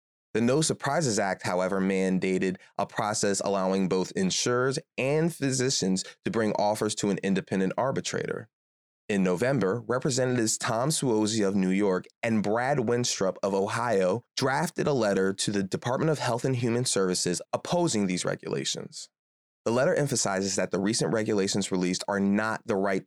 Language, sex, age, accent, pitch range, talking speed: English, male, 20-39, American, 95-125 Hz, 155 wpm